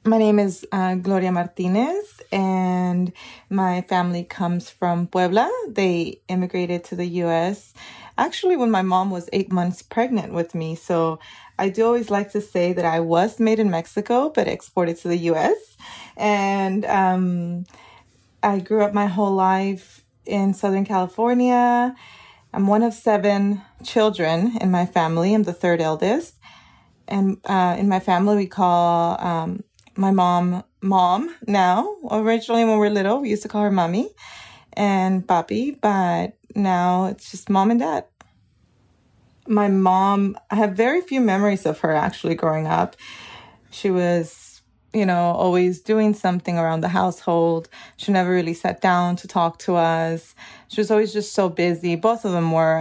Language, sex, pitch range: English, female, 175-210 Hz